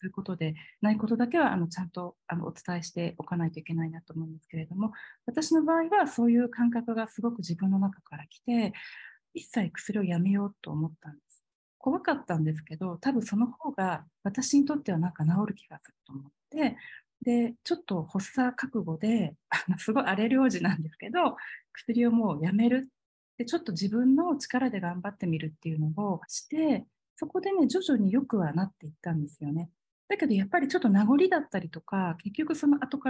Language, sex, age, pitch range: Japanese, female, 40-59, 175-255 Hz